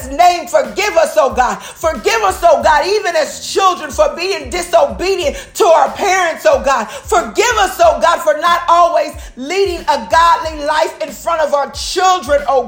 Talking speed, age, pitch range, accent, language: 175 wpm, 40-59, 295-360 Hz, American, English